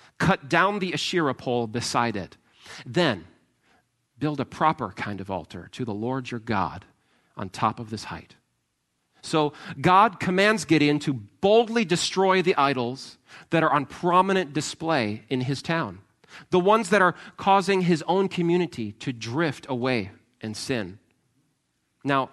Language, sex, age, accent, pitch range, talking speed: English, male, 40-59, American, 120-175 Hz, 150 wpm